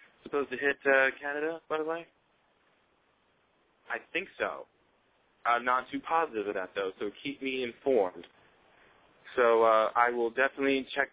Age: 20-39